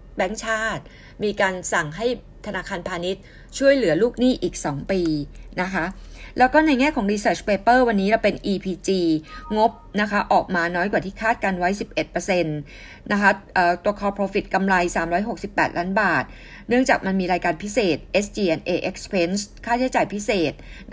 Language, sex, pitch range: Thai, female, 180-230 Hz